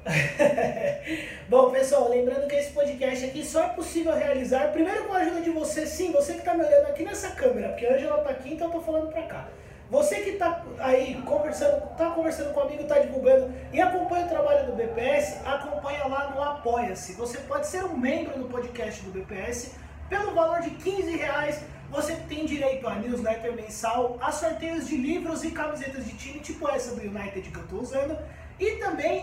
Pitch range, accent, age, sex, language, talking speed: 255-320 Hz, Brazilian, 20-39, male, Portuguese, 200 wpm